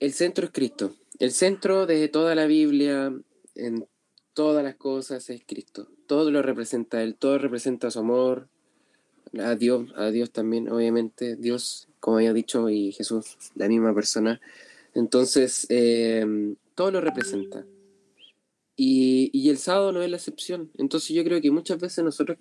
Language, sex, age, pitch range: Spanish, male, 20-39, 115-160 Hz